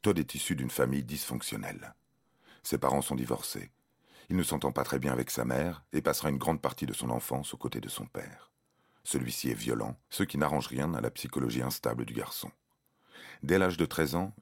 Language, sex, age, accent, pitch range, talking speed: French, male, 40-59, French, 65-80 Hz, 210 wpm